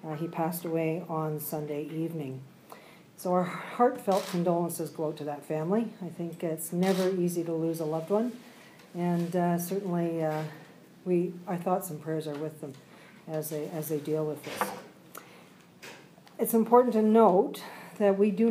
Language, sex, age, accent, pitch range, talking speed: English, female, 50-69, American, 165-195 Hz, 160 wpm